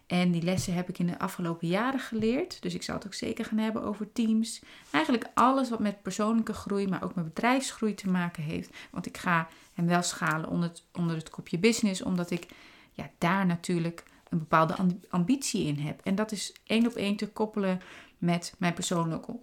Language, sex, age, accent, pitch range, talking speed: Dutch, female, 30-49, Dutch, 175-220 Hz, 200 wpm